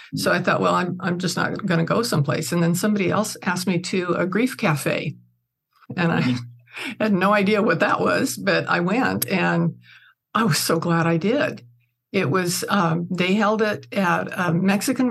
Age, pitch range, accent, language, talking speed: 60-79, 165-205 Hz, American, English, 195 wpm